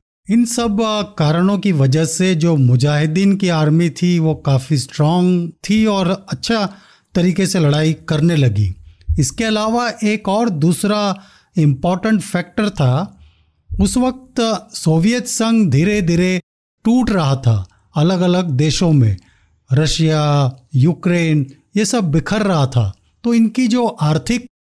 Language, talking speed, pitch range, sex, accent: Hindi, 130 wpm, 145-205 Hz, male, native